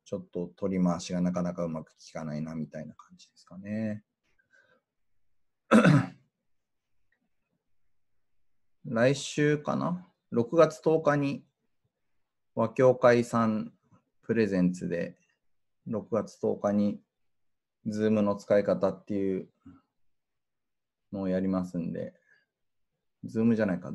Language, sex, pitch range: Japanese, male, 95-145 Hz